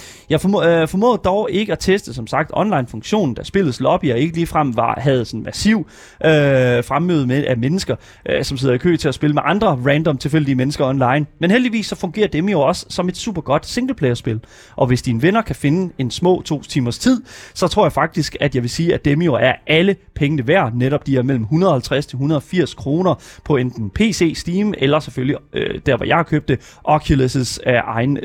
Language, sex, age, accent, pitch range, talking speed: Danish, male, 30-49, native, 140-185 Hz, 200 wpm